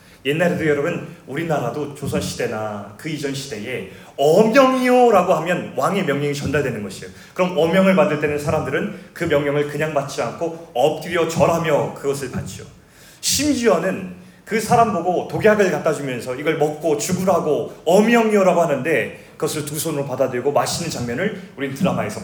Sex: male